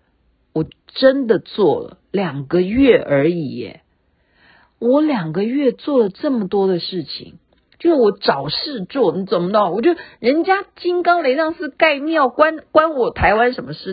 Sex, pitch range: female, 160-250 Hz